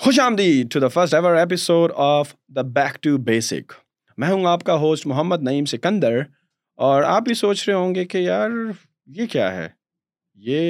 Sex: male